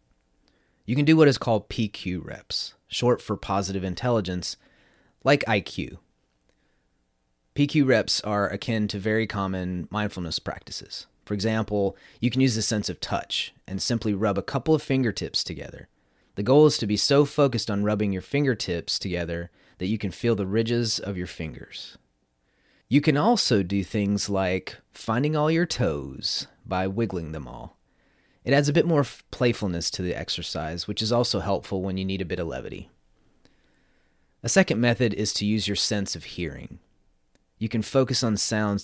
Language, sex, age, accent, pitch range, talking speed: English, male, 30-49, American, 90-120 Hz, 170 wpm